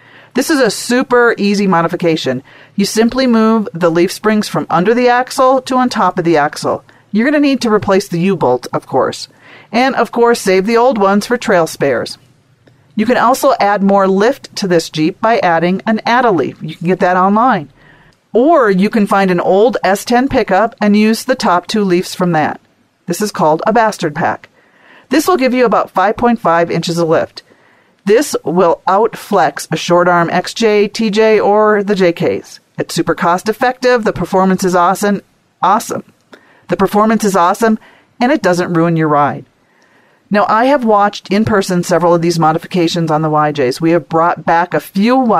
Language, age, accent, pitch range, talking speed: English, 40-59, American, 170-220 Hz, 180 wpm